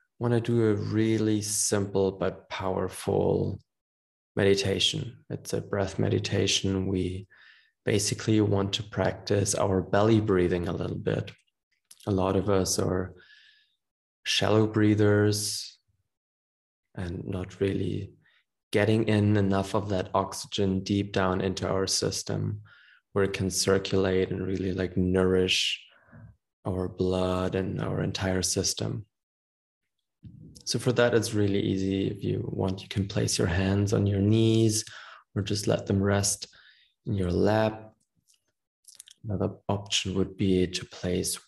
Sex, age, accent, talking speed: male, 20-39, German, 130 wpm